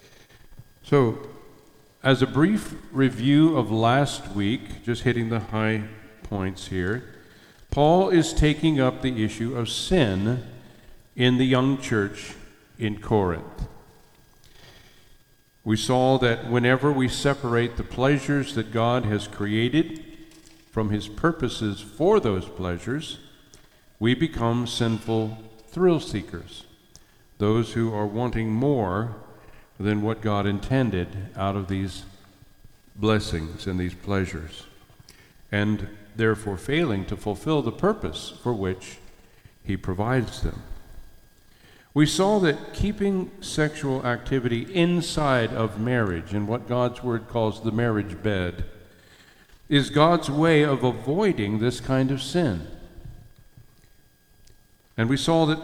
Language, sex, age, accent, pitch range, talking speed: English, male, 50-69, American, 105-140 Hz, 115 wpm